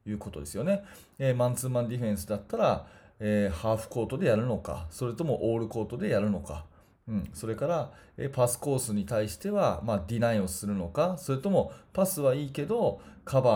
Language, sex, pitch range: Japanese, male, 105-145 Hz